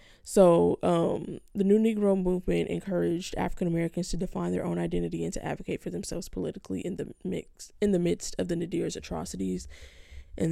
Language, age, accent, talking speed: English, 10-29, American, 175 wpm